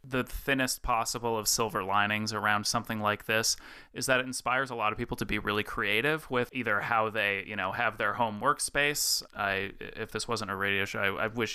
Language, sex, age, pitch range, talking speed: English, male, 30-49, 110-125 Hz, 220 wpm